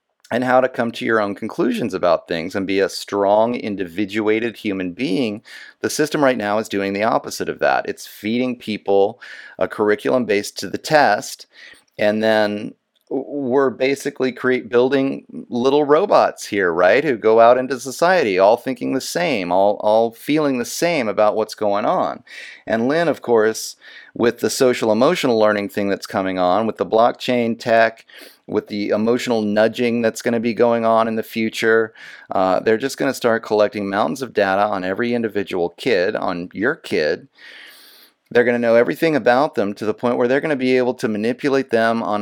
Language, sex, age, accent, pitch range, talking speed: English, male, 30-49, American, 105-125 Hz, 185 wpm